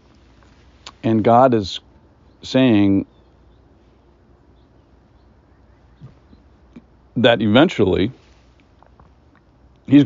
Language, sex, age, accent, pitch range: English, male, 50-69, American, 80-100 Hz